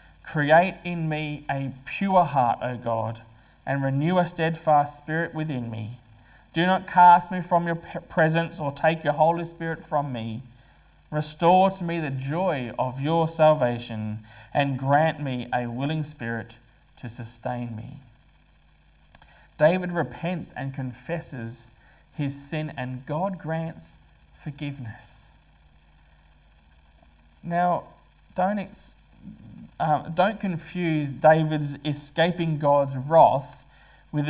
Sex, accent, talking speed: male, Australian, 115 wpm